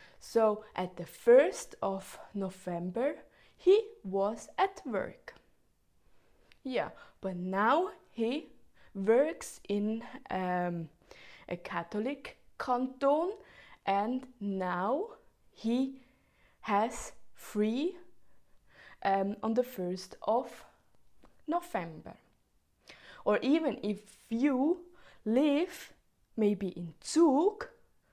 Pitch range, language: 195-280 Hz, English